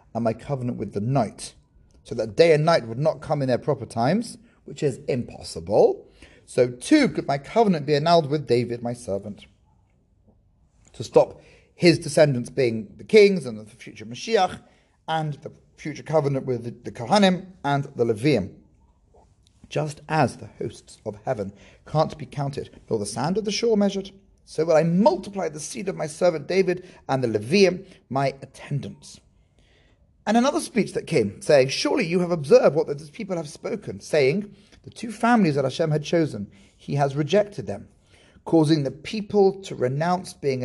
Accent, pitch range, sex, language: British, 120-185 Hz, male, English